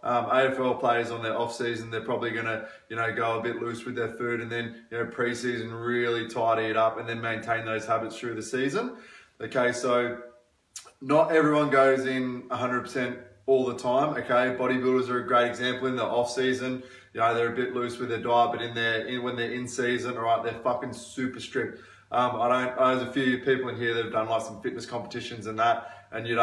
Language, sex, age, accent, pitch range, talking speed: English, male, 20-39, Australian, 115-130 Hz, 230 wpm